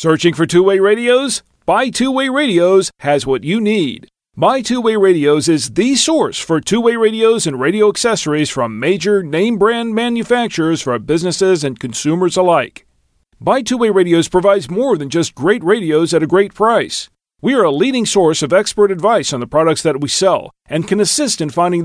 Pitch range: 160-225 Hz